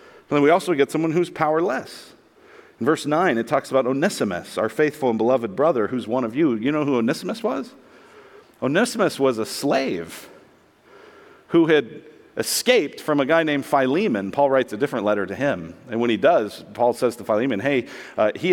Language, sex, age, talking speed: English, male, 50-69, 190 wpm